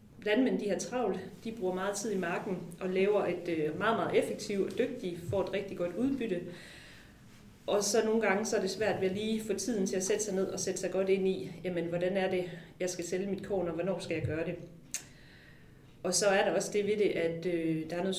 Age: 30-49